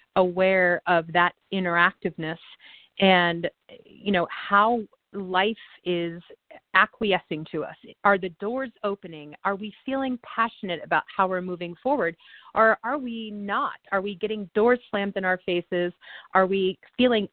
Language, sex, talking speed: English, female, 140 wpm